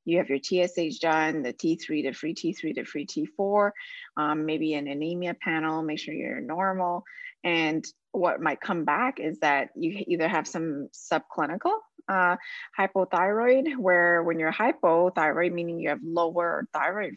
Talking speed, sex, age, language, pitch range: 155 wpm, female, 20-39, English, 165-230 Hz